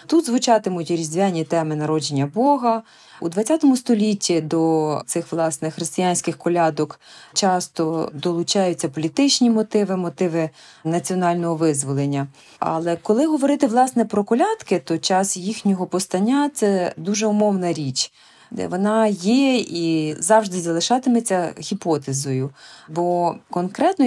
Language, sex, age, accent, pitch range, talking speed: Ukrainian, female, 30-49, native, 165-220 Hz, 110 wpm